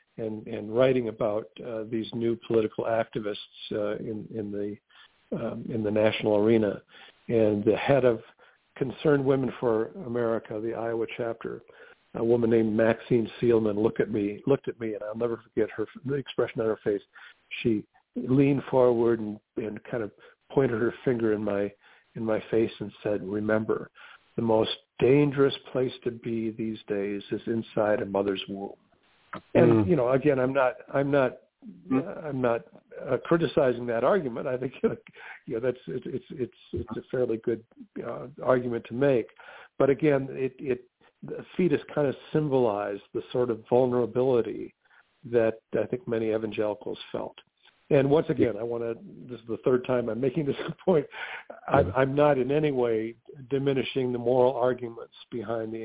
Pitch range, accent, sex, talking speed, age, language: 110-130 Hz, American, male, 170 wpm, 50-69, English